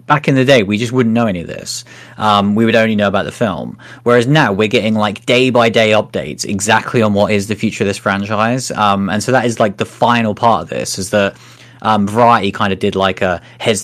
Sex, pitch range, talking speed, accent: male, 100-120 Hz, 250 wpm, British